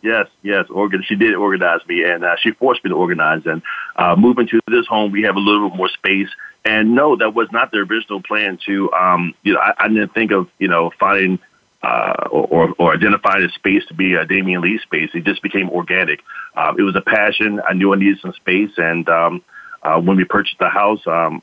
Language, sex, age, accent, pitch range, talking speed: English, male, 40-59, American, 90-105 Hz, 230 wpm